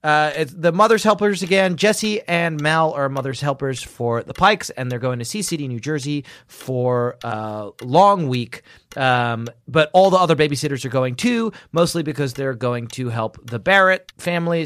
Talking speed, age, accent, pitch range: 180 wpm, 30-49, American, 130-175 Hz